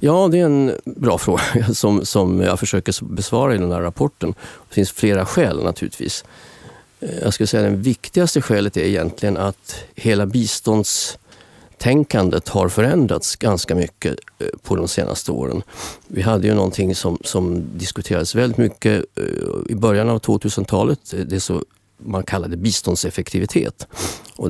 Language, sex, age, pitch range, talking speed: Swedish, male, 40-59, 95-110 Hz, 145 wpm